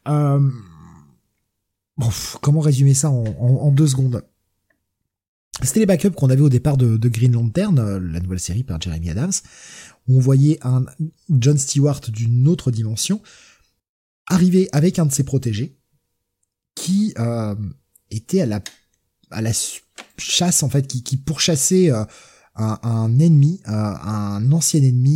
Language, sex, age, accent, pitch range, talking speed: French, male, 20-39, French, 110-155 Hz, 150 wpm